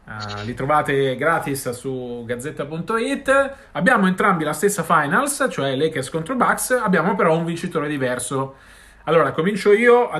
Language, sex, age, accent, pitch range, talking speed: Italian, male, 30-49, native, 130-185 Hz, 140 wpm